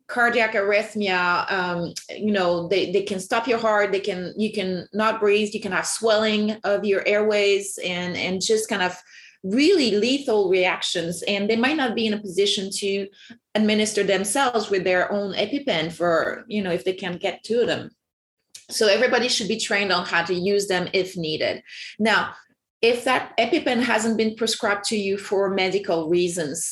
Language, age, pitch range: English, 30-49, 185-225 Hz